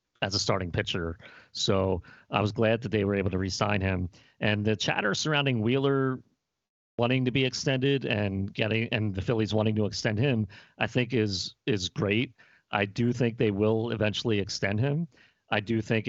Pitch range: 100-120 Hz